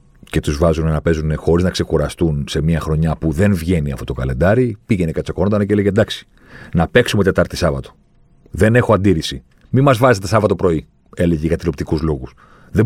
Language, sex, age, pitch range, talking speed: Greek, male, 40-59, 90-120 Hz, 185 wpm